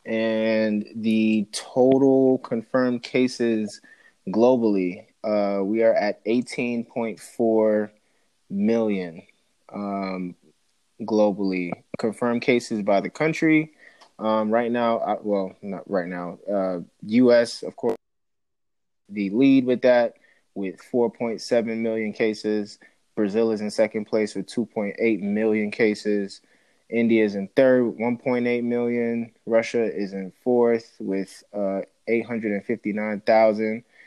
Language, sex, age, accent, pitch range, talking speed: English, male, 20-39, American, 105-120 Hz, 110 wpm